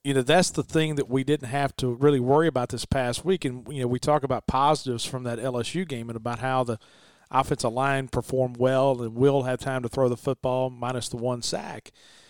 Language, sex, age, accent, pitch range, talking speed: English, male, 40-59, American, 125-145 Hz, 230 wpm